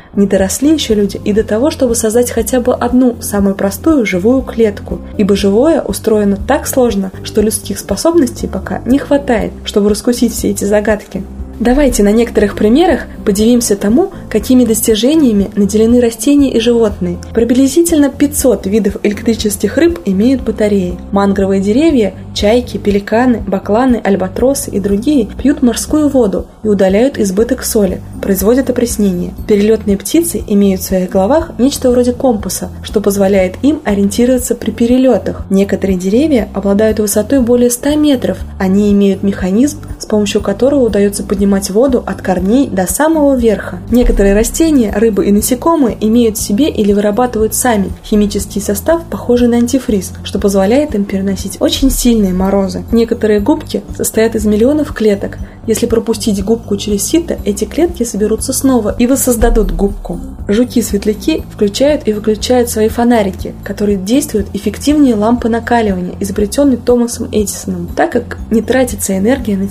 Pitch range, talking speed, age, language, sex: 205-250 Hz, 140 wpm, 20-39, Russian, female